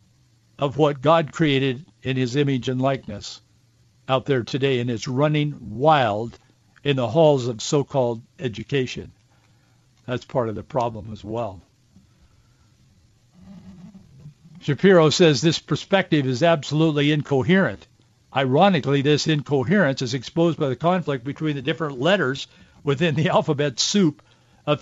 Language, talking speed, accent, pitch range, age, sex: English, 130 wpm, American, 125-165 Hz, 60-79, male